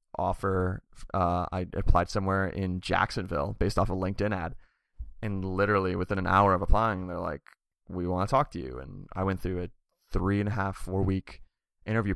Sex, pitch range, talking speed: male, 95-105 Hz, 190 wpm